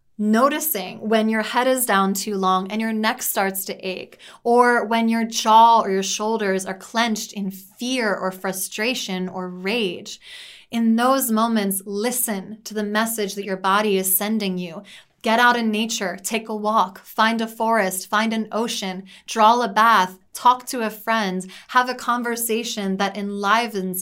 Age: 20-39